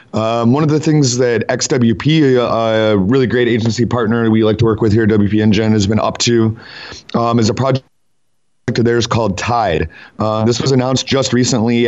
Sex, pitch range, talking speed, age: male, 110-125 Hz, 200 wpm, 30-49